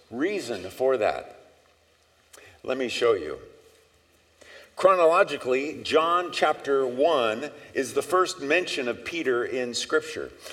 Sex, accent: male, American